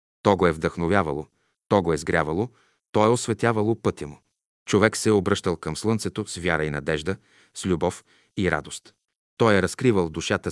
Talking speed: 175 wpm